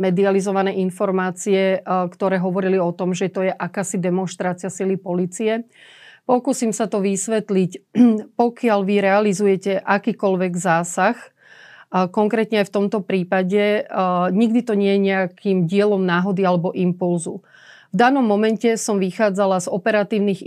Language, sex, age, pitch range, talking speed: Slovak, female, 30-49, 185-215 Hz, 125 wpm